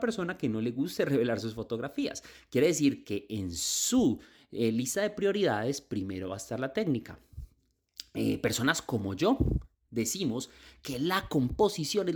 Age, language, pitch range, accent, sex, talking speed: 30-49, Spanish, 105-165 Hz, Colombian, male, 160 wpm